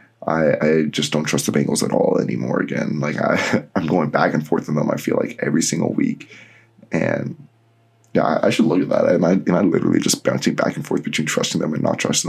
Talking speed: 245 wpm